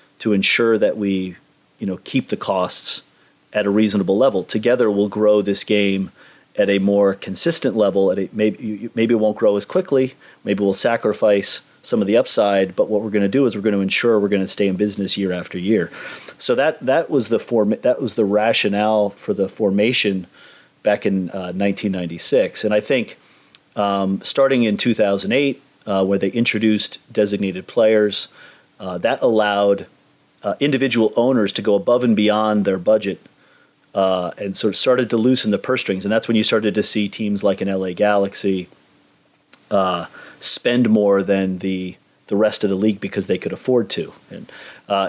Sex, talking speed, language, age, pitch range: male, 190 wpm, English, 30-49, 95-110 Hz